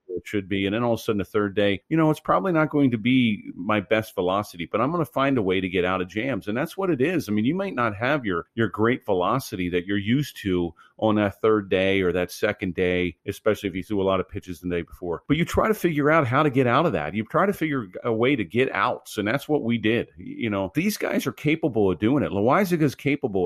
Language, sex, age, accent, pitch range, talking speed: English, male, 40-59, American, 95-140 Hz, 285 wpm